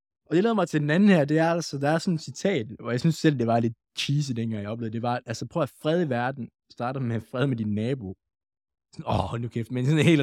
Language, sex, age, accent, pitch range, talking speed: Danish, male, 20-39, native, 105-145 Hz, 285 wpm